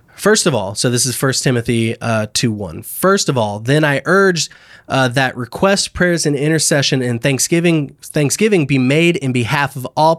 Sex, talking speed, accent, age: male, 190 wpm, American, 20-39